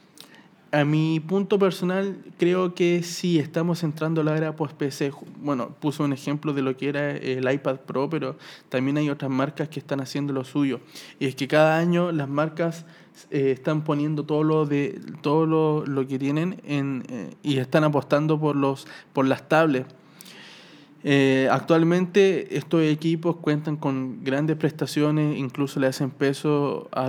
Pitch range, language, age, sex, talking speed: 135-155 Hz, Spanish, 20-39, male, 170 wpm